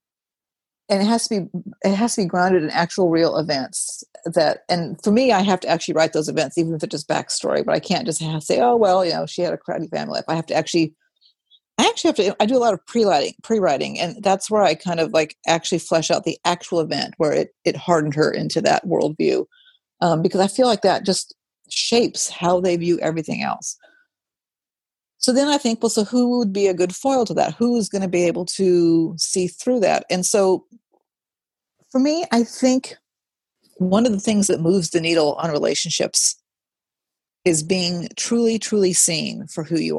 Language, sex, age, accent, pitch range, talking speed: English, female, 50-69, American, 170-225 Hz, 210 wpm